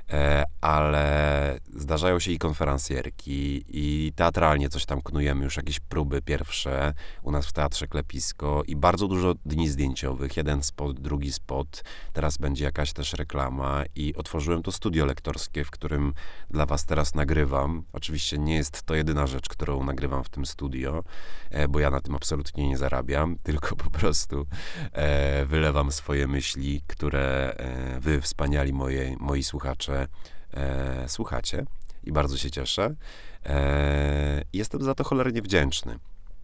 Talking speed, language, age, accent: 135 wpm, Polish, 30-49, native